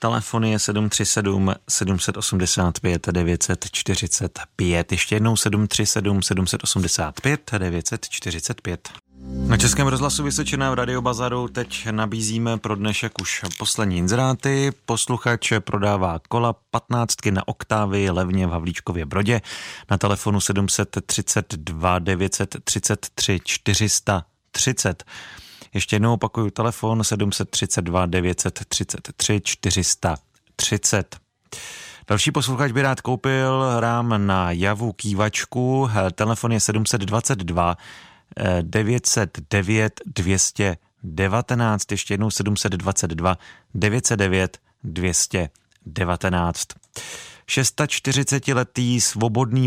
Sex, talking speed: male, 70 wpm